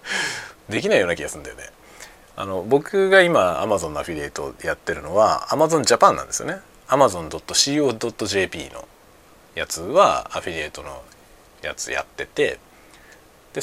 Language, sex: Japanese, male